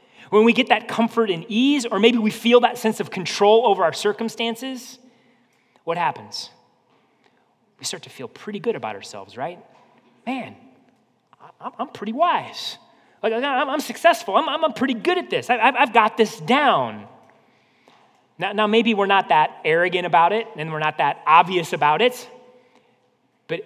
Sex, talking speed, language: male, 160 wpm, English